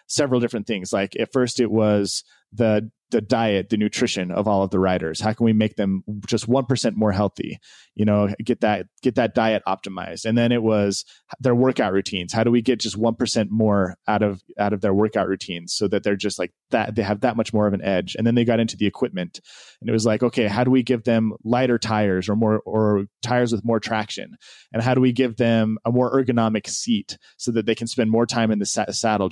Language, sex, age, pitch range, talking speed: English, male, 20-39, 100-115 Hz, 240 wpm